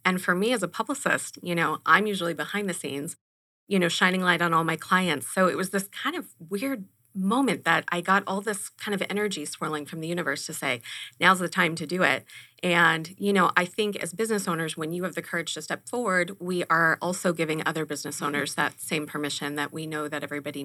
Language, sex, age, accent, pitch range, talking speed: English, female, 30-49, American, 155-185 Hz, 235 wpm